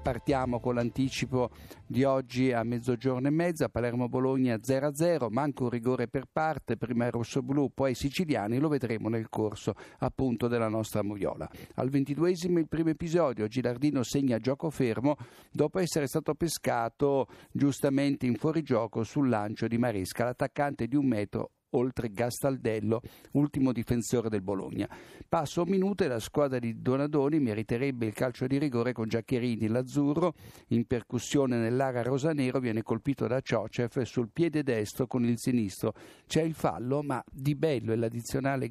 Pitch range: 115-145 Hz